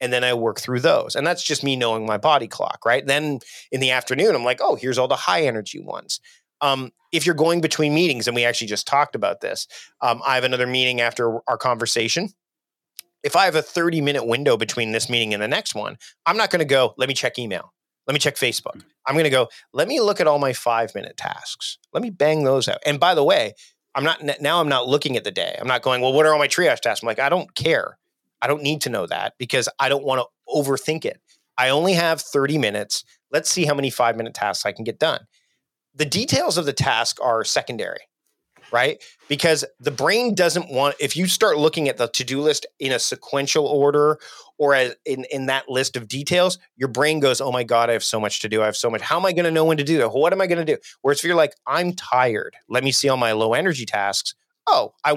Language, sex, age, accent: English, male, 30-49, American